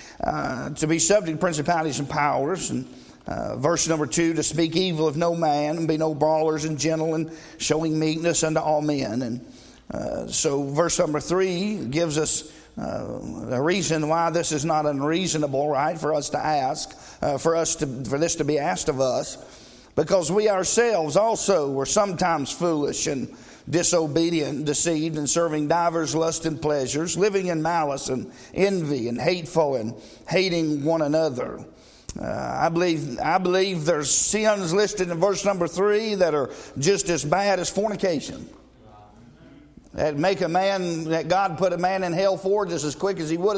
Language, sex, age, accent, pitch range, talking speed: English, male, 50-69, American, 155-190 Hz, 175 wpm